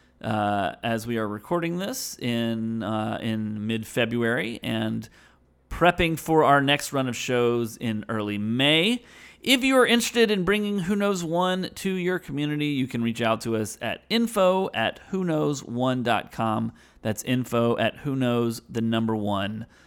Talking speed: 155 wpm